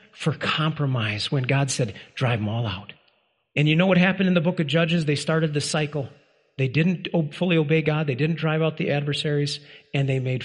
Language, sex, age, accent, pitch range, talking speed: English, male, 40-59, American, 150-225 Hz, 215 wpm